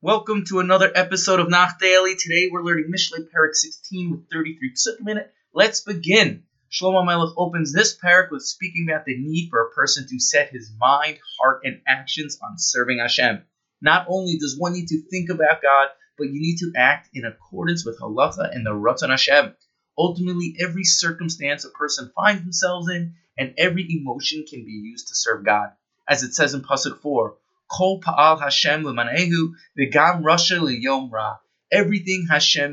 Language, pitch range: English, 140-180 Hz